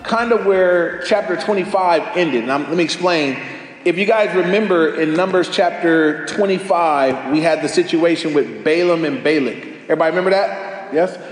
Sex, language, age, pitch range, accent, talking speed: male, English, 30-49, 165-195 Hz, American, 160 wpm